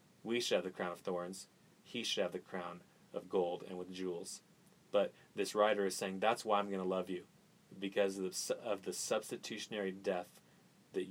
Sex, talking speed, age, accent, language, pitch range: male, 200 wpm, 30-49, American, English, 95-120 Hz